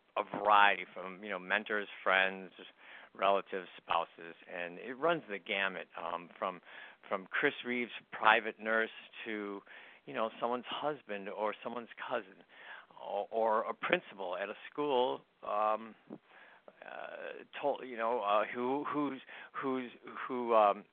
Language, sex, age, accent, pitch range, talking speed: English, male, 50-69, American, 105-140 Hz, 105 wpm